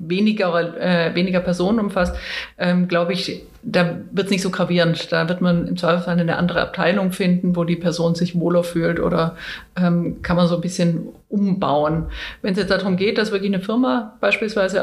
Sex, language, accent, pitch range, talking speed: female, German, German, 175-200 Hz, 190 wpm